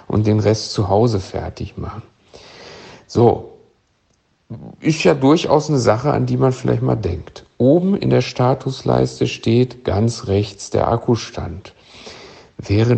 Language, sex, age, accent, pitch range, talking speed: German, male, 50-69, German, 100-130 Hz, 135 wpm